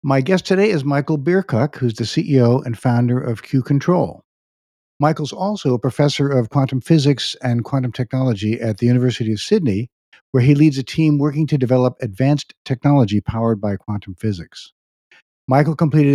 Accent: American